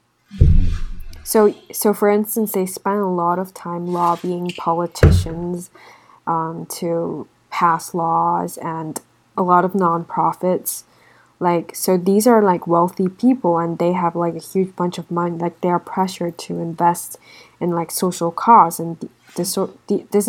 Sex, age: female, 20-39